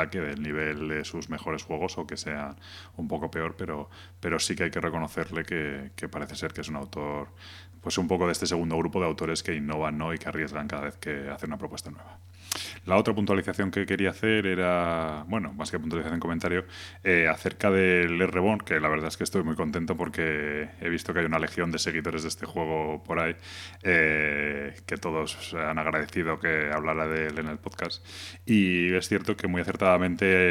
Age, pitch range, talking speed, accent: 20-39, 80-95 Hz, 210 wpm, Spanish